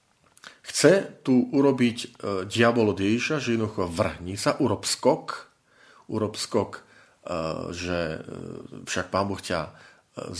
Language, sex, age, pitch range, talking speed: Slovak, male, 40-59, 85-110 Hz, 125 wpm